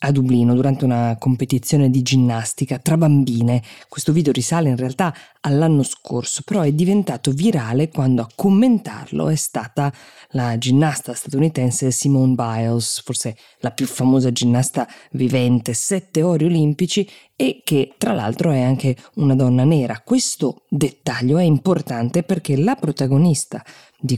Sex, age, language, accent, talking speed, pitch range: female, 20-39, Italian, native, 140 wpm, 125-160 Hz